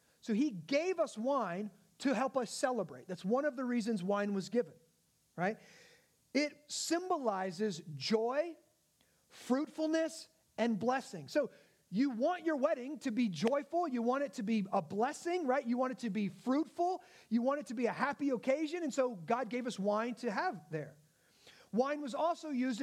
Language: English